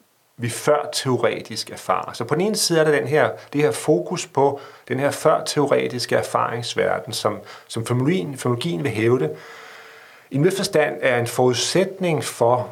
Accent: native